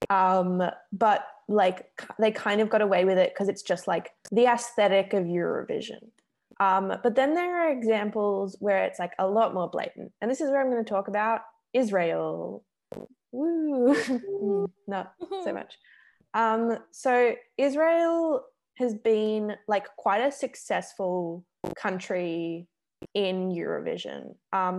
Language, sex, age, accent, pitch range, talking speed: English, female, 20-39, Australian, 180-225 Hz, 140 wpm